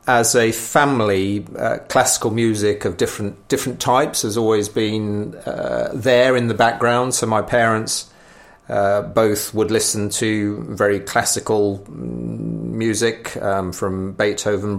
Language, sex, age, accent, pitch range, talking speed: English, male, 30-49, British, 105-120 Hz, 130 wpm